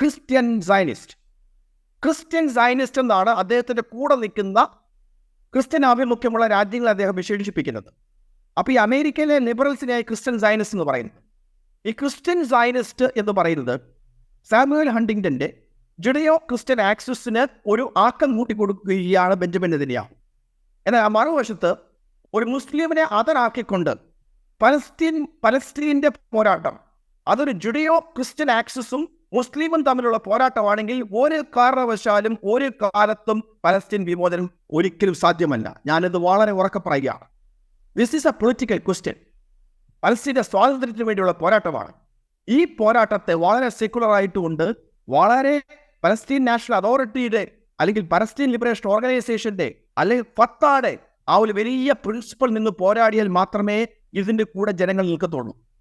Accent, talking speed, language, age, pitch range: native, 100 wpm, Malayalam, 50-69, 195-260 Hz